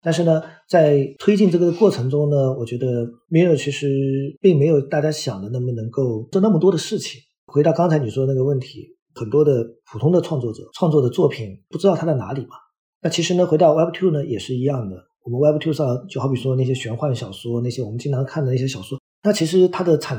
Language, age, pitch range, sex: Chinese, 50-69, 130-170 Hz, male